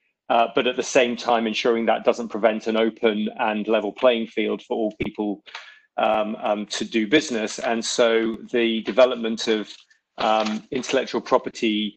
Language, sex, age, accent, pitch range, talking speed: English, male, 30-49, British, 110-120 Hz, 160 wpm